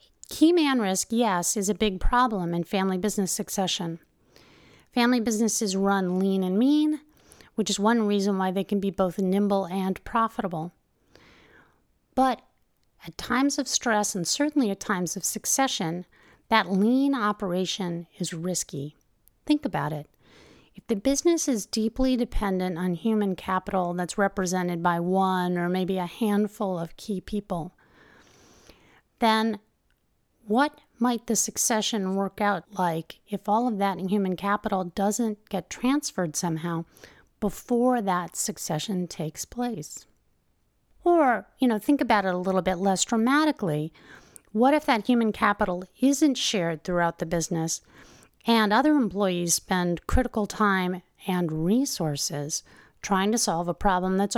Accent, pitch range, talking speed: American, 180-230 Hz, 140 wpm